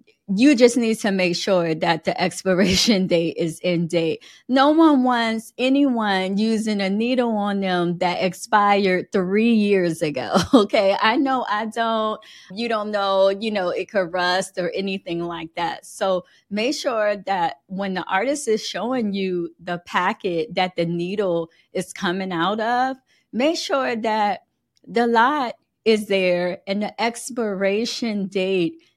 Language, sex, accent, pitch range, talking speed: English, female, American, 180-230 Hz, 155 wpm